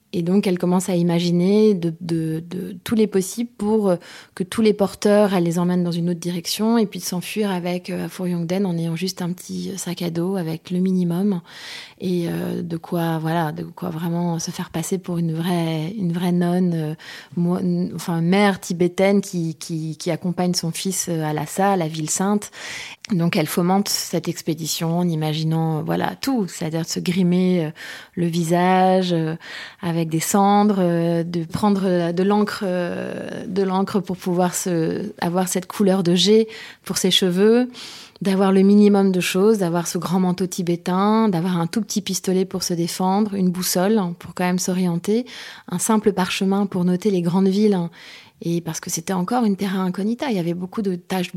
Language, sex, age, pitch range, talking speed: French, female, 20-39, 175-200 Hz, 195 wpm